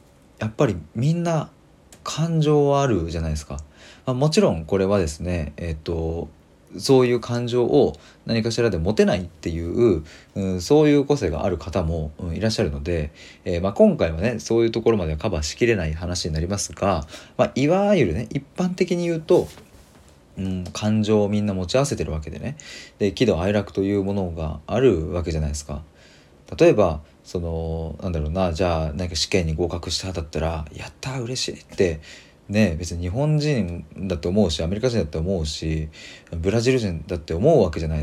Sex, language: male, Japanese